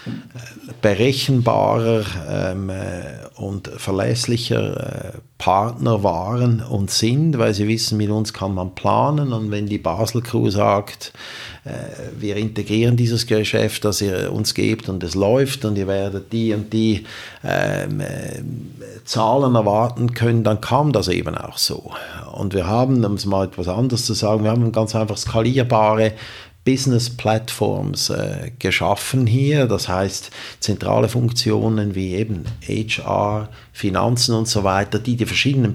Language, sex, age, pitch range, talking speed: German, male, 50-69, 105-125 Hz, 145 wpm